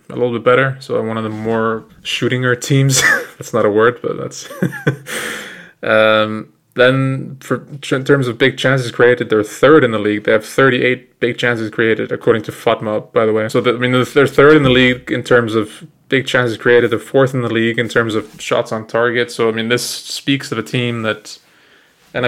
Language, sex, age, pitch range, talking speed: English, male, 20-39, 110-125 Hz, 215 wpm